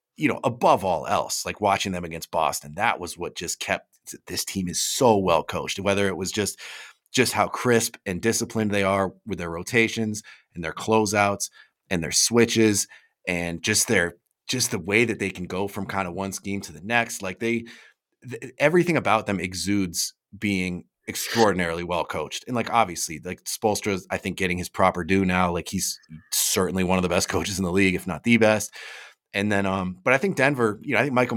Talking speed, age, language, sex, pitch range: 205 wpm, 30-49, English, male, 90-110 Hz